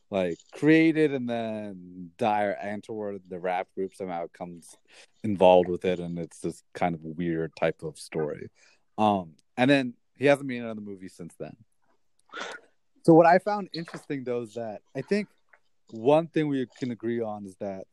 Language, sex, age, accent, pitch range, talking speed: English, male, 30-49, American, 100-130 Hz, 175 wpm